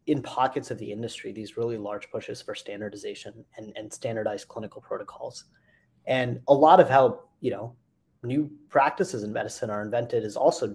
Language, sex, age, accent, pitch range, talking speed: English, male, 30-49, American, 120-150 Hz, 175 wpm